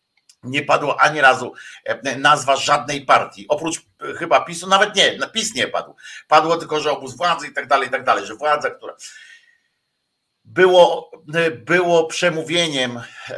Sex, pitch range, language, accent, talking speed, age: male, 160-195 Hz, Polish, native, 145 wpm, 50-69